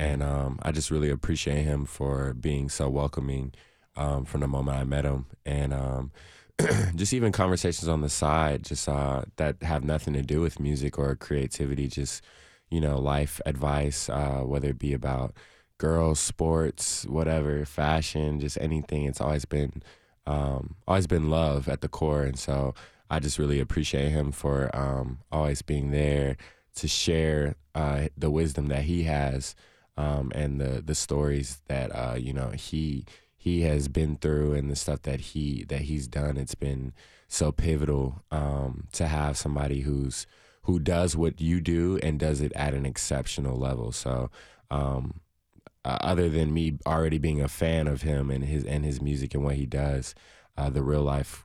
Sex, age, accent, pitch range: male, 20-39, American, 70-75 Hz